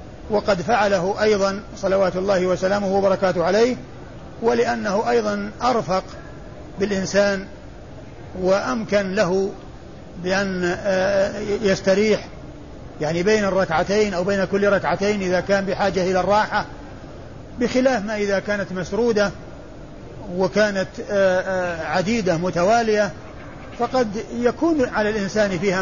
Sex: male